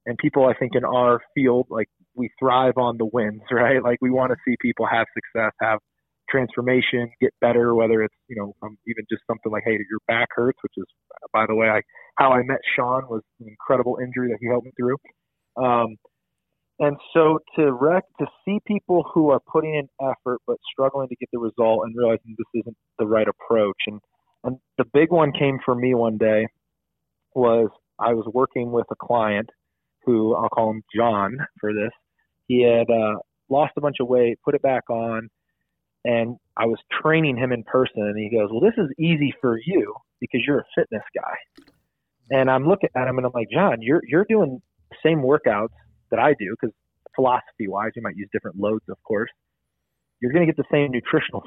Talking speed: 200 wpm